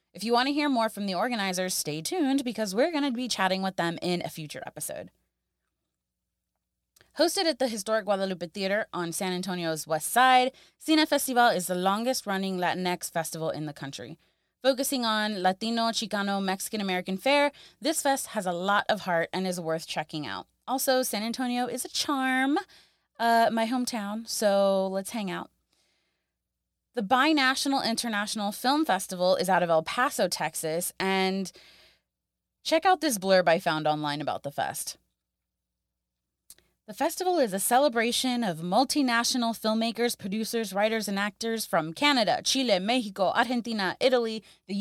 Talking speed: 155 wpm